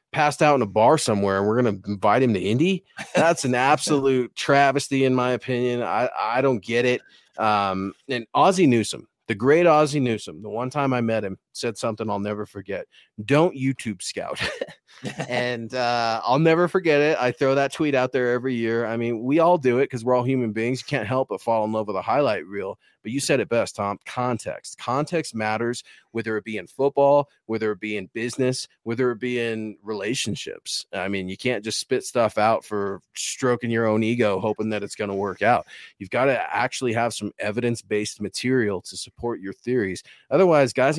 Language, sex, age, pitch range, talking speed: English, male, 30-49, 110-130 Hz, 210 wpm